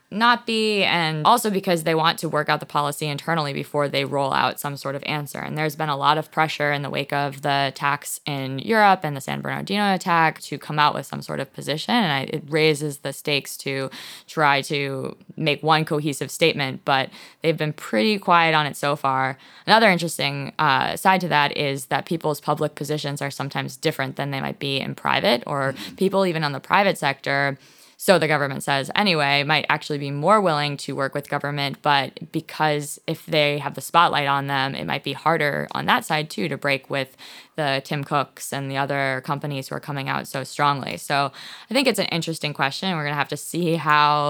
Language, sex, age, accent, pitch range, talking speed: English, female, 20-39, American, 140-160 Hz, 215 wpm